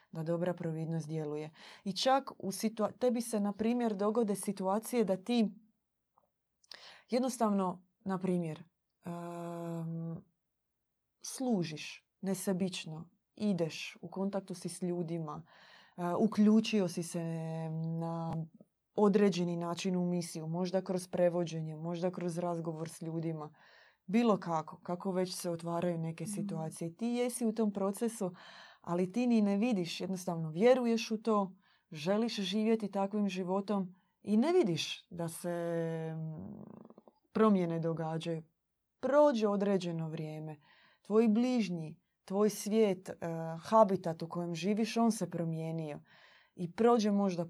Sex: female